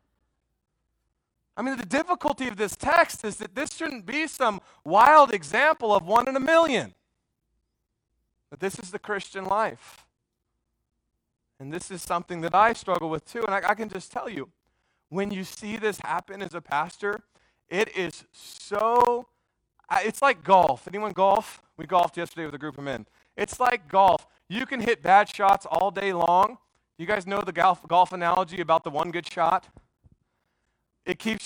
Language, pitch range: English, 175-225 Hz